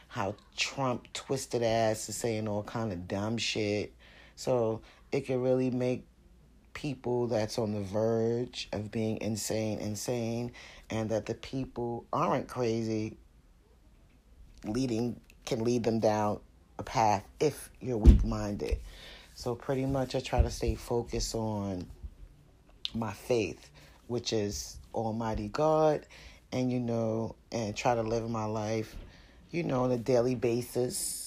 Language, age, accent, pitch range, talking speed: English, 30-49, American, 105-125 Hz, 140 wpm